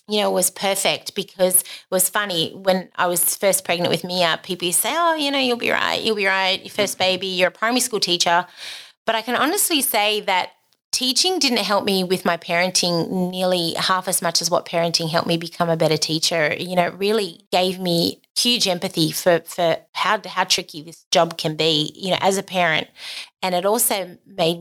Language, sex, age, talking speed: English, female, 30-49, 210 wpm